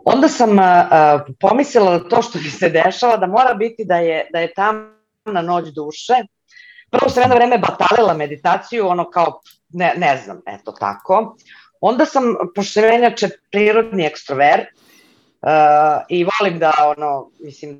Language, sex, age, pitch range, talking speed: Croatian, female, 40-59, 155-200 Hz, 145 wpm